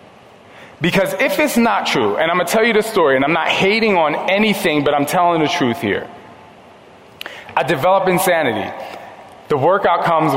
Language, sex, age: English, male, 20-39